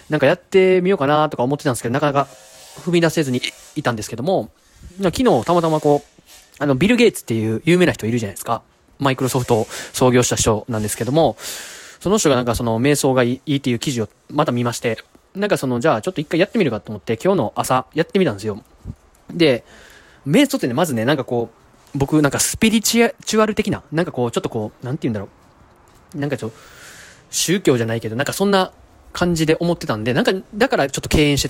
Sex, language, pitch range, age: male, Japanese, 120-165 Hz, 20-39